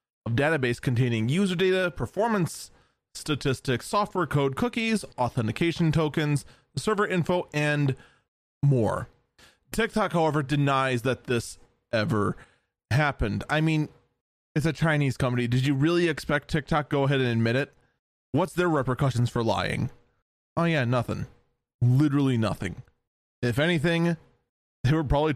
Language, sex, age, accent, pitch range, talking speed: English, male, 20-39, American, 120-155 Hz, 125 wpm